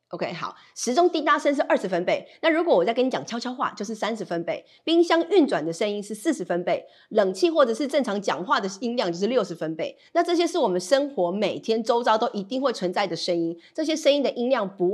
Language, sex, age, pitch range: Chinese, female, 30-49, 200-305 Hz